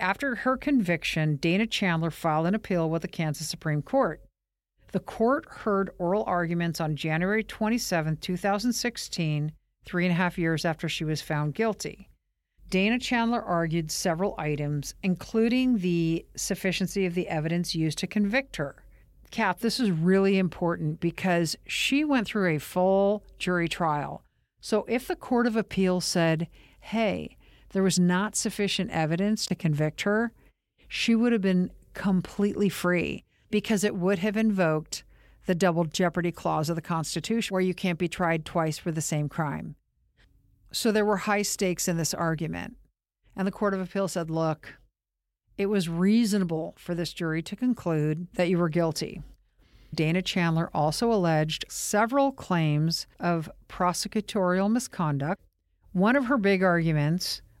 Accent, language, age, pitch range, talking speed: American, English, 50-69, 165-205 Hz, 150 wpm